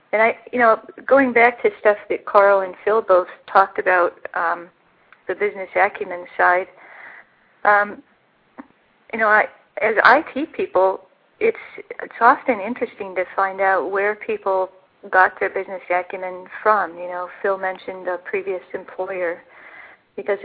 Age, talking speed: 40-59, 145 wpm